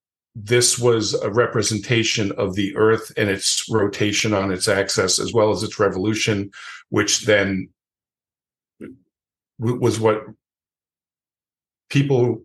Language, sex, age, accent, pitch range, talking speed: English, male, 50-69, American, 95-120 Hz, 110 wpm